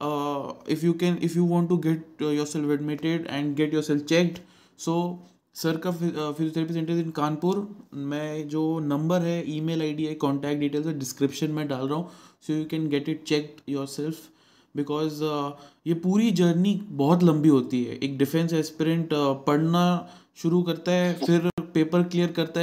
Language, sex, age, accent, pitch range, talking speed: Hindi, male, 20-39, native, 145-170 Hz, 170 wpm